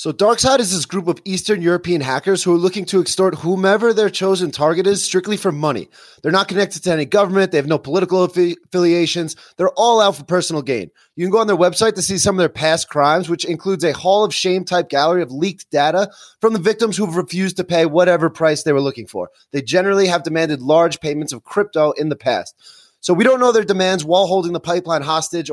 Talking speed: 235 wpm